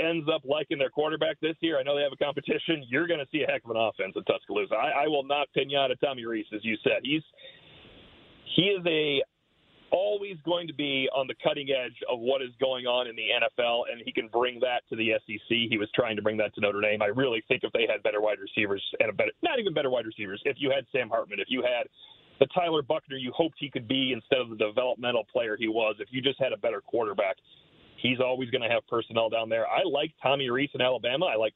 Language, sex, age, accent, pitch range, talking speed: English, male, 40-59, American, 115-155 Hz, 260 wpm